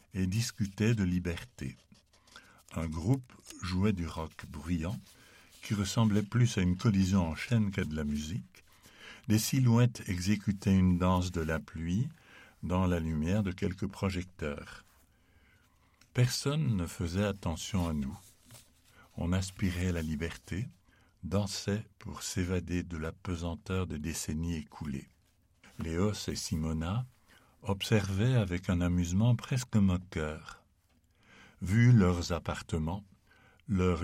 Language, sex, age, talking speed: Dutch, male, 60-79, 120 wpm